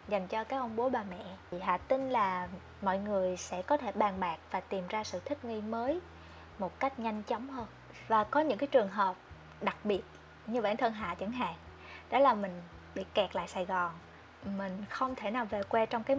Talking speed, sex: 220 wpm, female